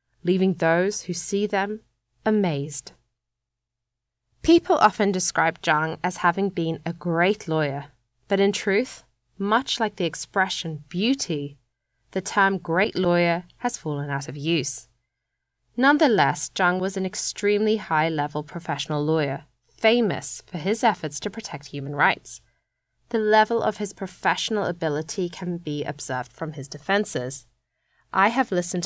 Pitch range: 140-195 Hz